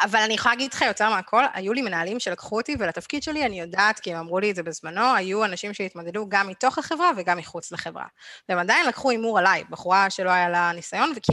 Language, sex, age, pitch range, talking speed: Hebrew, female, 20-39, 190-270 Hz, 220 wpm